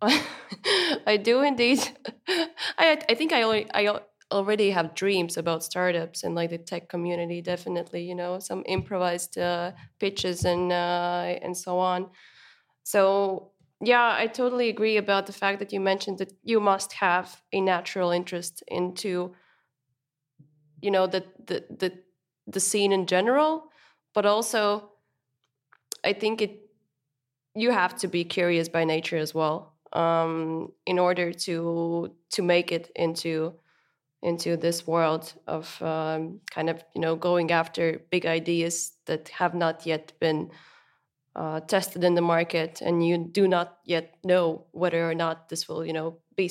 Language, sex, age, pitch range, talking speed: English, female, 20-39, 165-195 Hz, 150 wpm